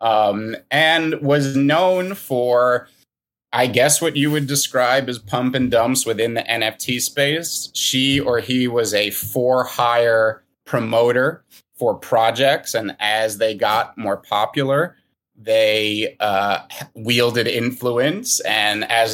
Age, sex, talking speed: 30-49, male, 130 wpm